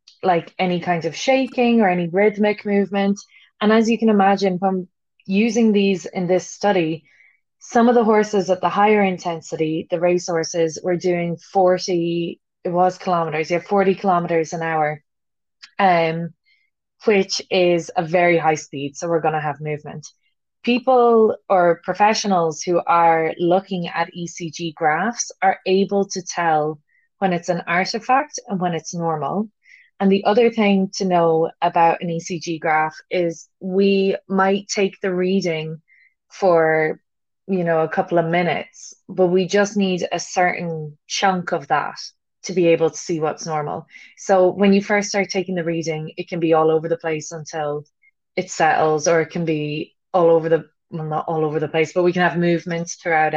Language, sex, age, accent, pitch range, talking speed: English, female, 20-39, Irish, 165-195 Hz, 170 wpm